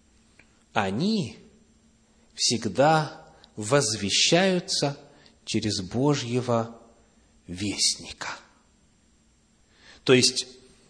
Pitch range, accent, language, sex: 125-185 Hz, native, Russian, male